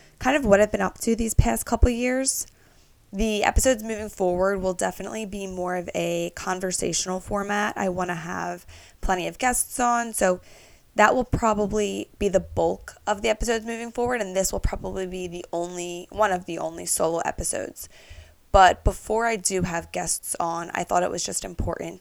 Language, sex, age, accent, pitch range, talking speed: English, female, 20-39, American, 170-195 Hz, 190 wpm